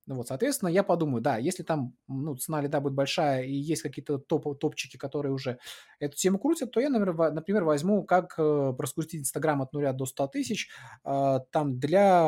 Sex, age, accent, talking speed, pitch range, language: male, 20-39, native, 175 wpm, 135-175 Hz, Russian